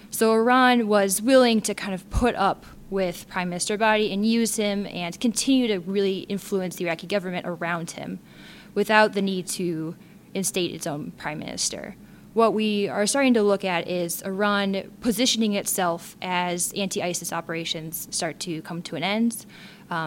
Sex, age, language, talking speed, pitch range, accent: female, 10-29, English, 165 wpm, 175-205 Hz, American